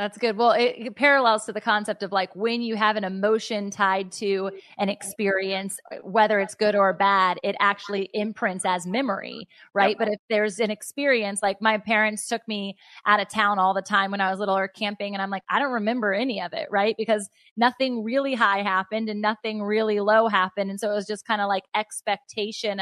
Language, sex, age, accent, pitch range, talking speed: English, female, 20-39, American, 200-245 Hz, 215 wpm